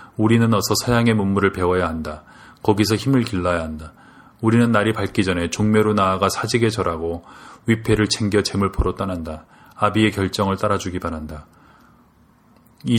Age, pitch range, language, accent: 30-49, 90-110 Hz, Korean, native